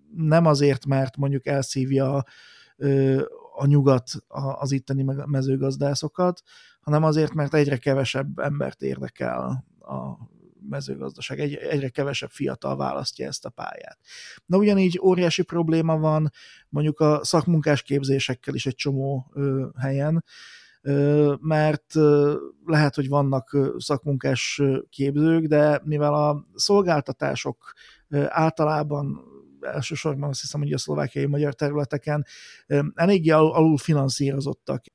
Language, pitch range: Hungarian, 135-155 Hz